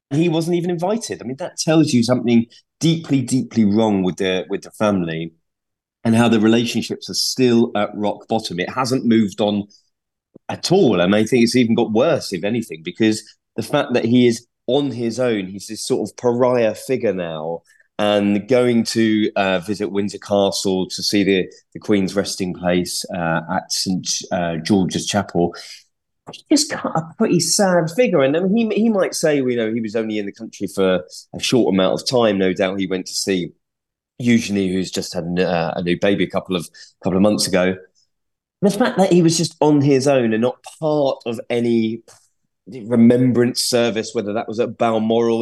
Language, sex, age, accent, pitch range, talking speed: English, male, 30-49, British, 95-125 Hz, 195 wpm